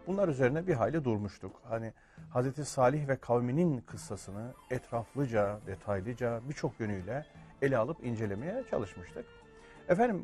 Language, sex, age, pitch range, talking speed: Turkish, male, 40-59, 110-145 Hz, 115 wpm